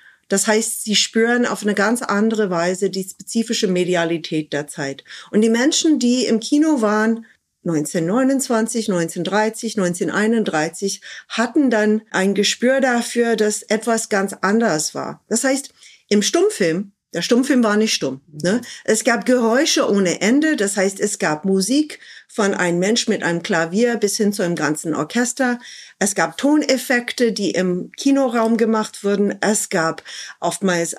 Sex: female